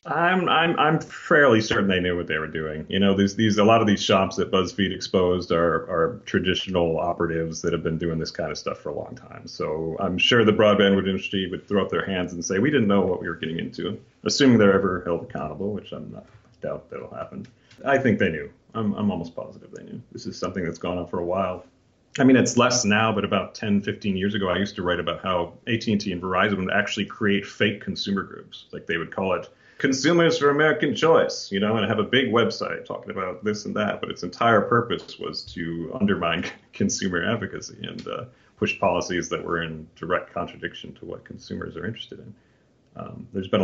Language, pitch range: English, 90-115 Hz